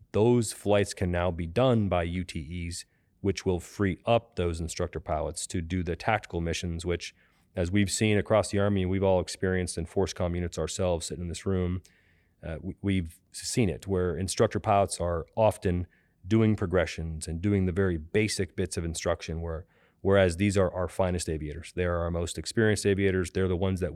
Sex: male